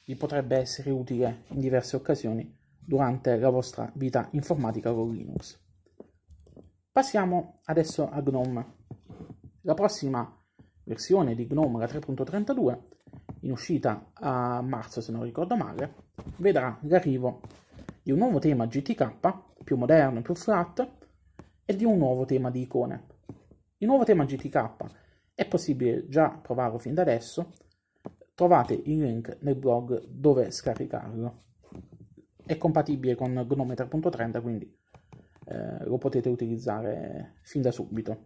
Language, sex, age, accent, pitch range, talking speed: Italian, male, 30-49, native, 115-145 Hz, 130 wpm